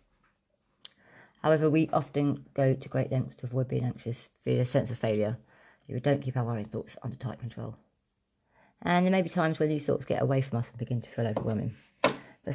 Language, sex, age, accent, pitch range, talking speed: English, female, 40-59, British, 115-140 Hz, 205 wpm